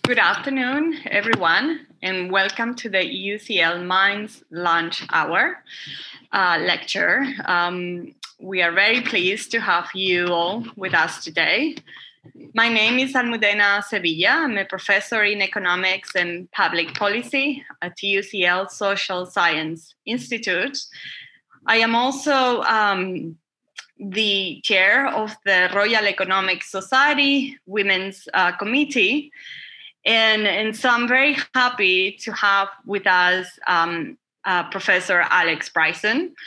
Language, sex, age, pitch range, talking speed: English, female, 20-39, 180-230 Hz, 120 wpm